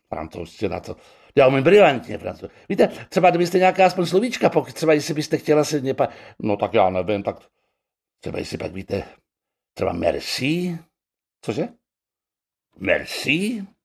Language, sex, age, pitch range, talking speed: Czech, male, 60-79, 120-155 Hz, 140 wpm